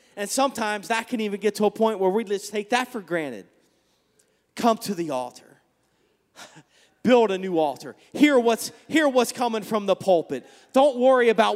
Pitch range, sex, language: 170-225 Hz, male, English